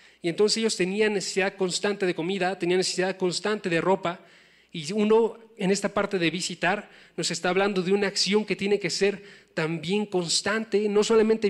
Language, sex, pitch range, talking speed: Spanish, male, 165-195 Hz, 175 wpm